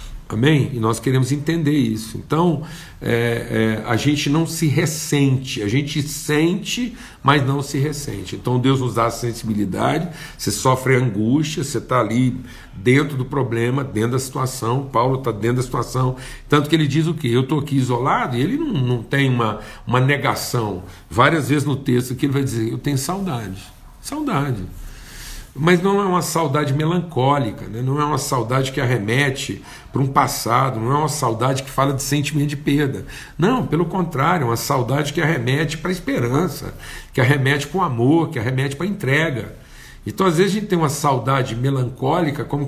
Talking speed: 185 wpm